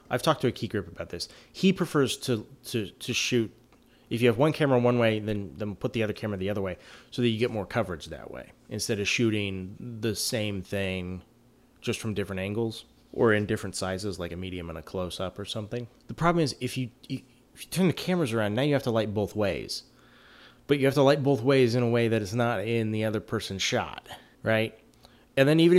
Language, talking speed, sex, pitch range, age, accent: English, 235 wpm, male, 105-145 Hz, 30-49, American